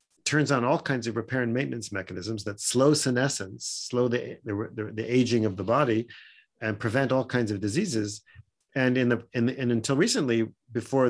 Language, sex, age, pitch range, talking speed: English, male, 40-59, 110-140 Hz, 190 wpm